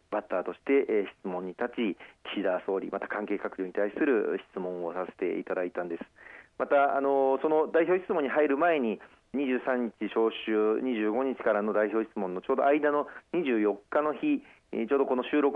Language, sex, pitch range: Japanese, male, 105-150 Hz